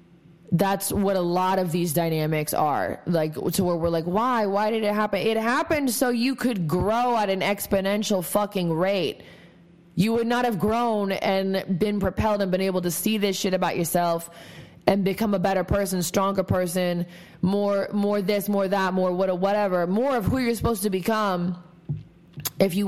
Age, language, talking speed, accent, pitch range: 20-39, English, 185 wpm, American, 175-205 Hz